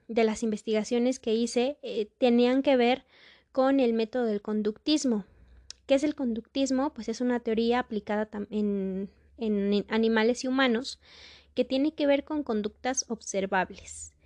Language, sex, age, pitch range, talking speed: Spanish, female, 20-39, 210-255 Hz, 150 wpm